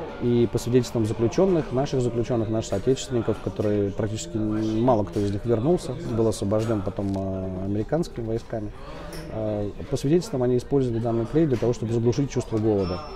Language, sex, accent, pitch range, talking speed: Russian, male, native, 105-130 Hz, 145 wpm